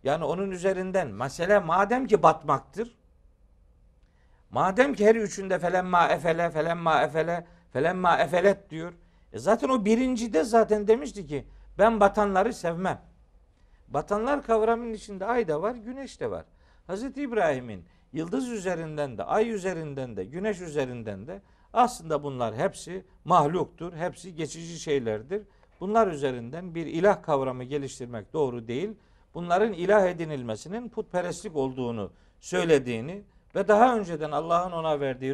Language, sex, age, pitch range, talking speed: Turkish, male, 50-69, 135-195 Hz, 125 wpm